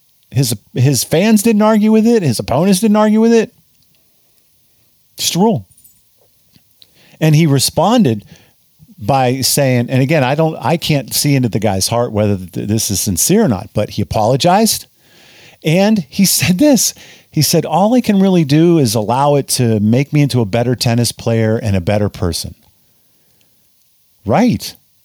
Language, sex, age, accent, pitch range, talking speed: English, male, 50-69, American, 115-185 Hz, 165 wpm